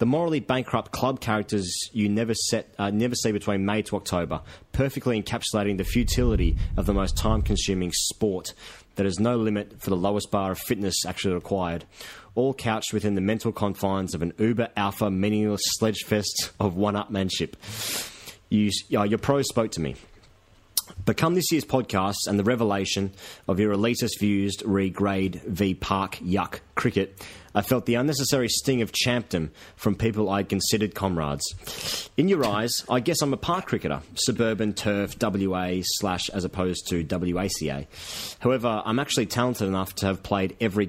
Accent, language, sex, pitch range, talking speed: Australian, English, male, 95-115 Hz, 155 wpm